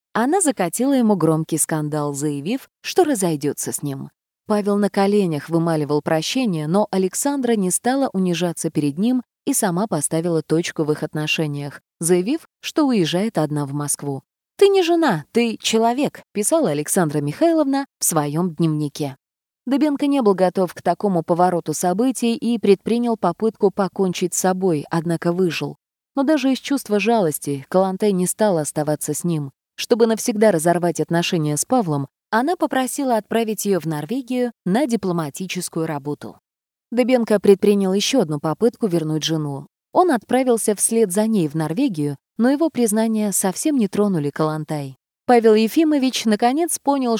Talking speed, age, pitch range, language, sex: 145 wpm, 20-39, 160-235 Hz, Russian, female